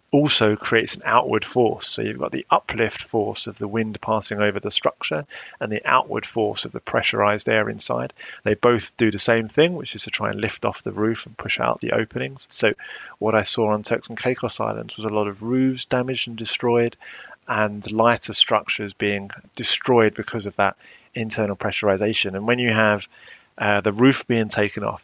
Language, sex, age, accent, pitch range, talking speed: English, male, 30-49, British, 105-120 Hz, 200 wpm